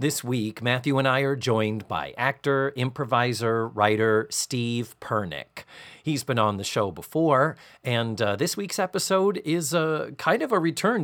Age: 40-59